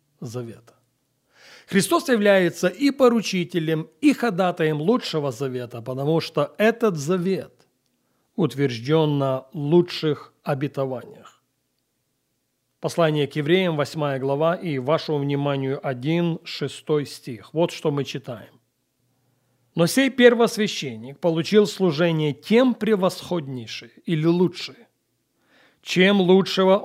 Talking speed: 95 wpm